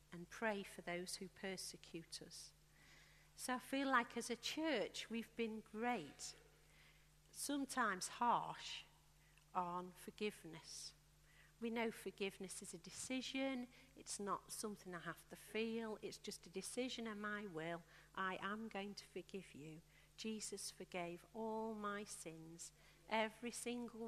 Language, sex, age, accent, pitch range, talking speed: English, female, 50-69, British, 175-220 Hz, 135 wpm